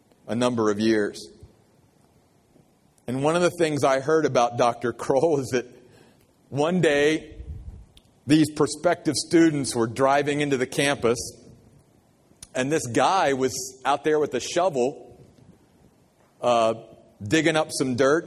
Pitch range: 130-170 Hz